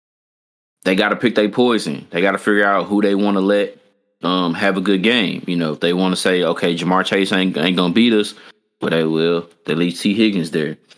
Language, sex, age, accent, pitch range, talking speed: English, male, 20-39, American, 90-100 Hz, 250 wpm